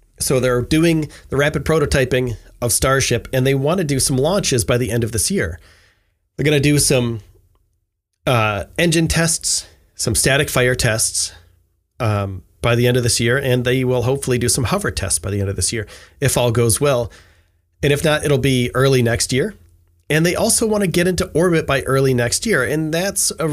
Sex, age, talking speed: male, 30-49, 200 wpm